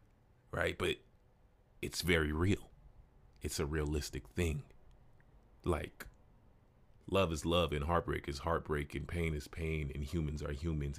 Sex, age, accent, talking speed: male, 30-49, American, 135 wpm